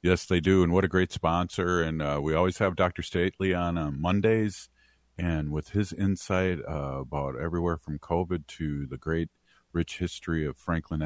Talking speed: 185 wpm